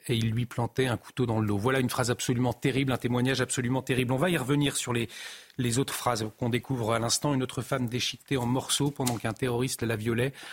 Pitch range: 120-135 Hz